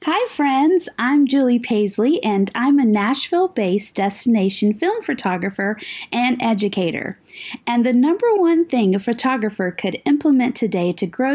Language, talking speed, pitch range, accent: English, 135 wpm, 195-285 Hz, American